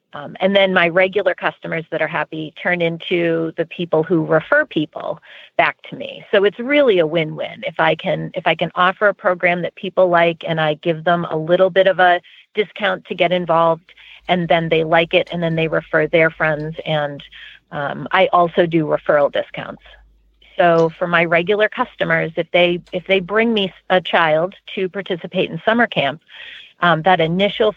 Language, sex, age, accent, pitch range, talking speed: English, female, 30-49, American, 160-190 Hz, 190 wpm